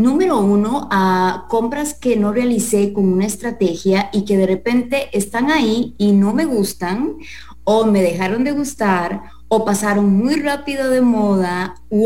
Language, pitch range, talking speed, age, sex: English, 195-240 Hz, 160 wpm, 30-49, female